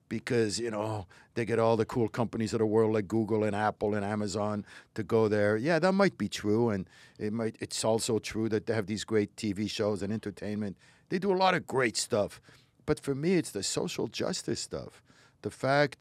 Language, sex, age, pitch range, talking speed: English, male, 60-79, 110-155 Hz, 215 wpm